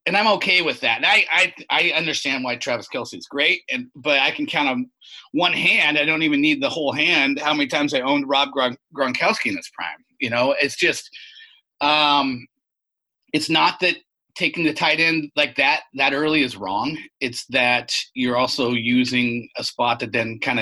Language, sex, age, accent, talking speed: English, male, 30-49, American, 205 wpm